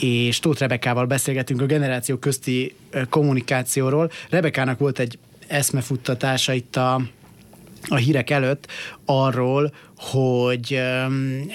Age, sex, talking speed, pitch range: 30-49, male, 105 wpm, 125-150 Hz